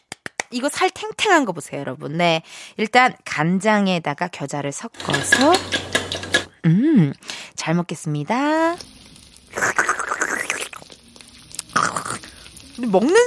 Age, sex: 20-39, female